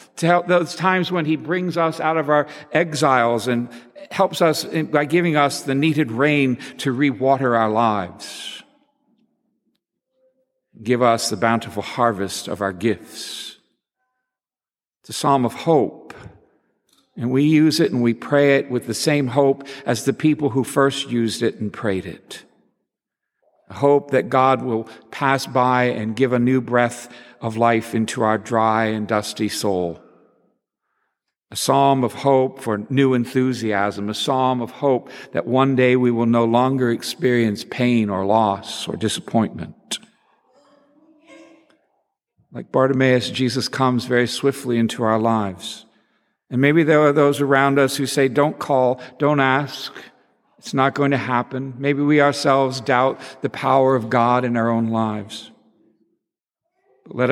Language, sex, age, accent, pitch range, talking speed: English, male, 60-79, American, 115-145 Hz, 150 wpm